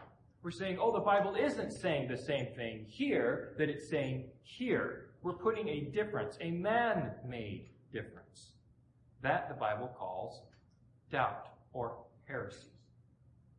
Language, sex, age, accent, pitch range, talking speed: English, male, 40-59, American, 125-170 Hz, 130 wpm